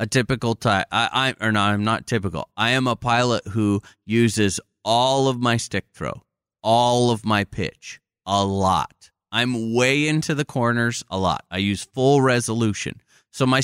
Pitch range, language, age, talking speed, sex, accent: 100-130 Hz, English, 30-49, 165 wpm, male, American